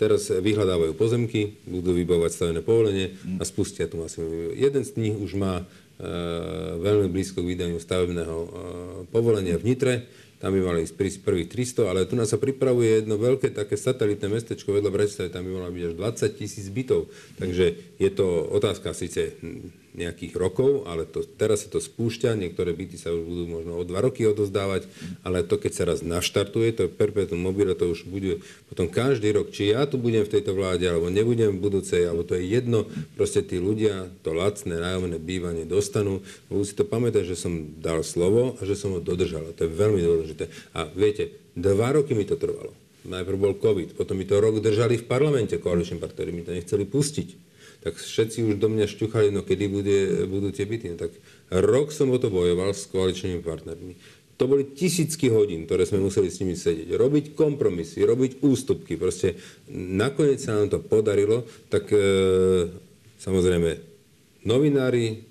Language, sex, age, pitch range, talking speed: Slovak, male, 40-59, 90-125 Hz, 185 wpm